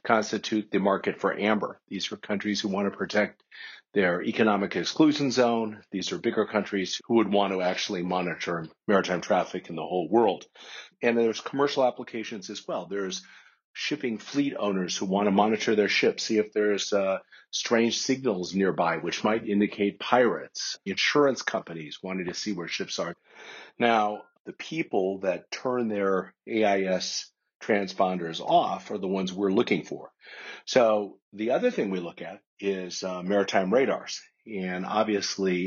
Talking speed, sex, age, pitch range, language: 160 wpm, male, 50-69, 95-110 Hz, English